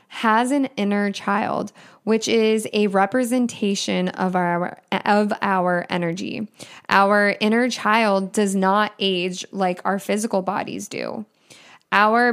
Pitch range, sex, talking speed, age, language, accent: 190-225 Hz, female, 120 wpm, 20-39, English, American